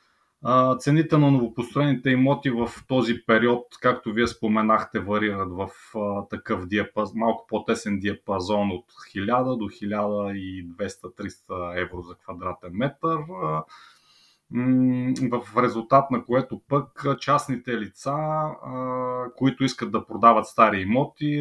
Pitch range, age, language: 100-130 Hz, 30-49, Bulgarian